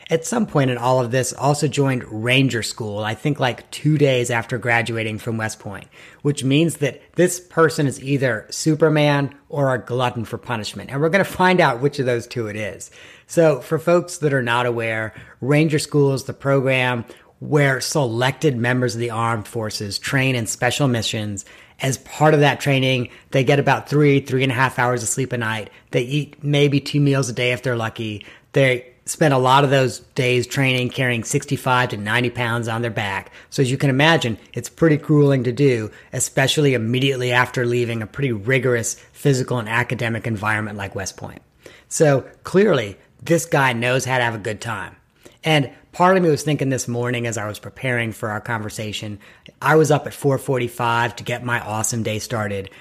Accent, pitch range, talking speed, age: American, 115-140 Hz, 200 wpm, 40-59